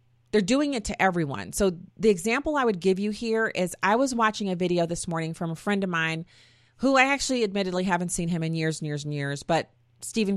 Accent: American